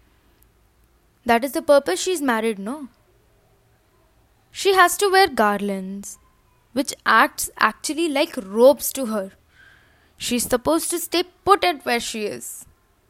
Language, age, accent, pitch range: Tamil, 10-29, native, 225-315 Hz